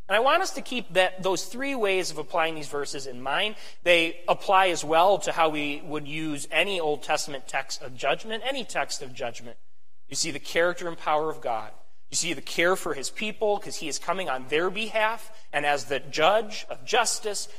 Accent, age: American, 30-49